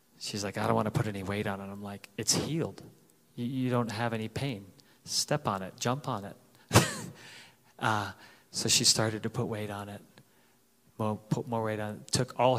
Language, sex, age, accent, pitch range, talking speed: English, male, 30-49, American, 105-125 Hz, 205 wpm